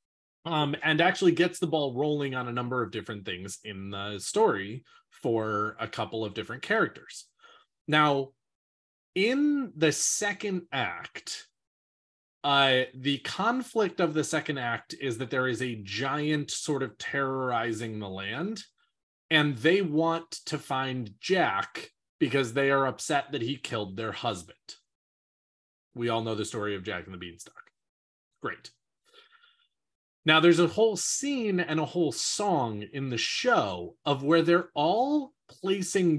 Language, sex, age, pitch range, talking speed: English, male, 20-39, 130-205 Hz, 150 wpm